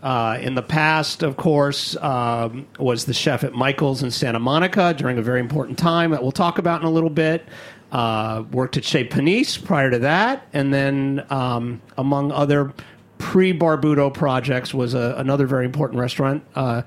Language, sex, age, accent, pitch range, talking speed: English, male, 50-69, American, 130-170 Hz, 175 wpm